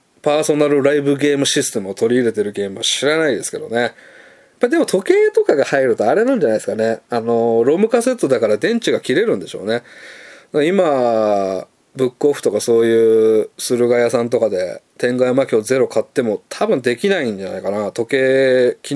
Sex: male